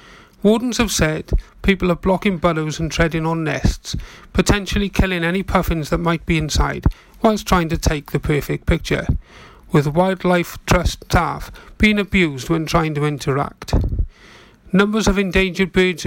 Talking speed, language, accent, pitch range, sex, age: 150 wpm, English, British, 155-185 Hz, male, 40-59